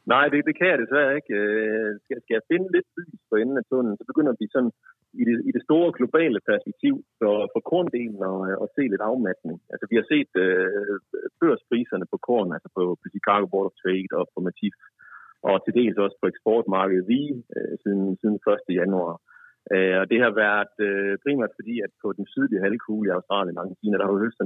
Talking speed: 200 wpm